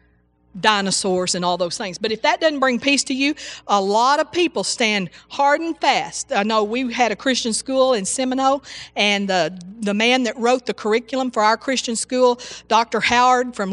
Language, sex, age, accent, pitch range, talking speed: English, female, 50-69, American, 190-245 Hz, 195 wpm